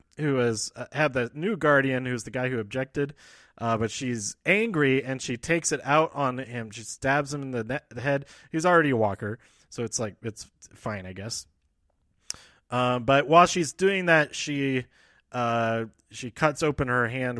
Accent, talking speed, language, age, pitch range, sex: American, 185 wpm, English, 20-39, 110-145 Hz, male